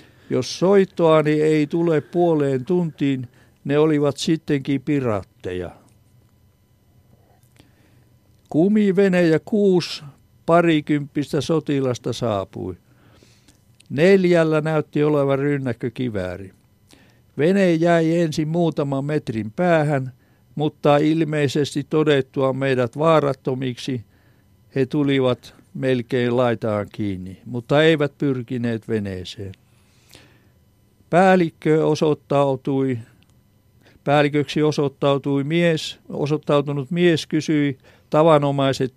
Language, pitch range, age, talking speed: Finnish, 115-155 Hz, 60-79, 75 wpm